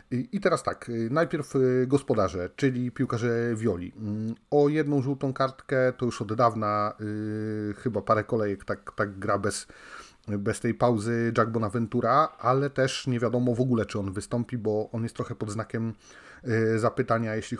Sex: male